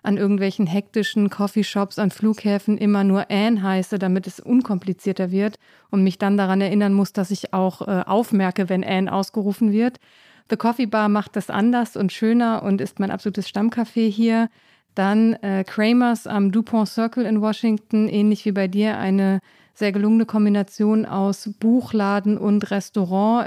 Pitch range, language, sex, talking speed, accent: 200-225 Hz, German, female, 160 wpm, German